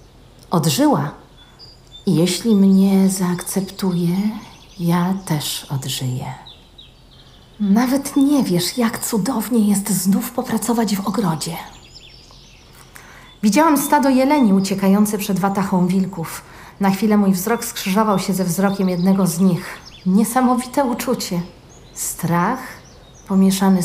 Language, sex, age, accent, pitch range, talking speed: Polish, female, 40-59, native, 165-220 Hz, 100 wpm